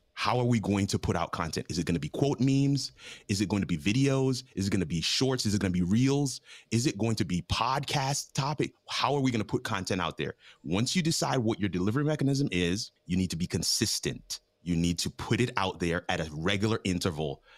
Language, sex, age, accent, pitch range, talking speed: English, male, 30-49, American, 95-125 Hz, 250 wpm